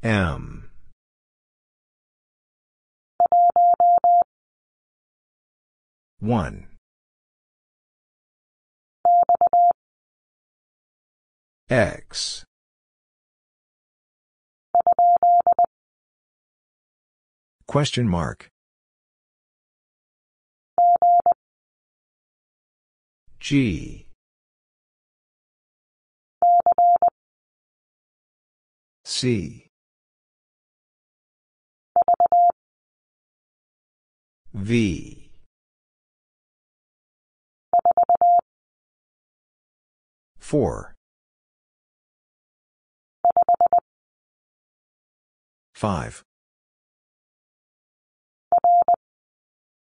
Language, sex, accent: English, female, American